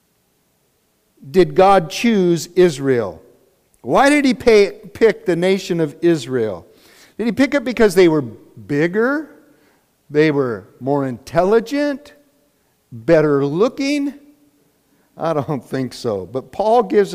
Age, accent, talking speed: 50-69, American, 120 wpm